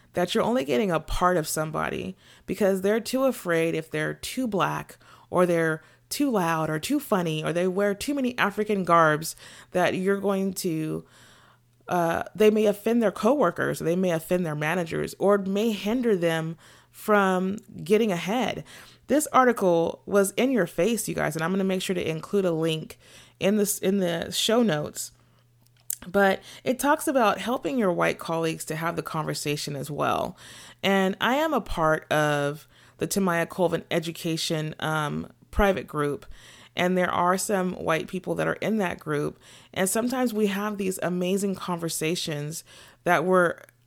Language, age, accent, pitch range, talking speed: English, 30-49, American, 160-205 Hz, 170 wpm